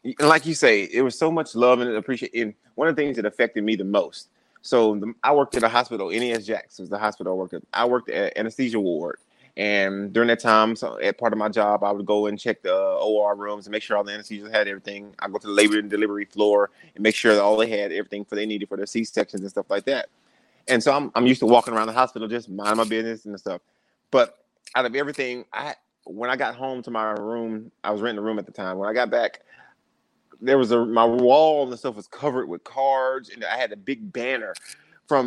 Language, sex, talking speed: English, male, 260 wpm